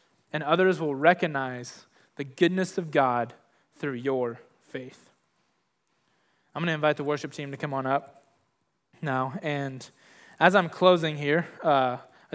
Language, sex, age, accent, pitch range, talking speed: English, male, 20-39, American, 135-165 Hz, 145 wpm